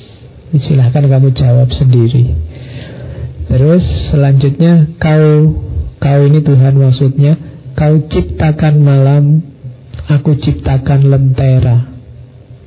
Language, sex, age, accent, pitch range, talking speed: Indonesian, male, 50-69, native, 125-150 Hz, 80 wpm